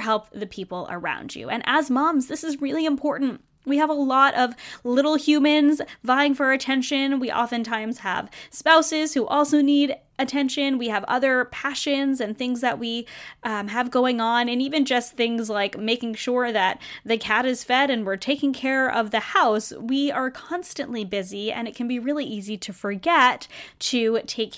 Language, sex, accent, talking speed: English, female, American, 185 wpm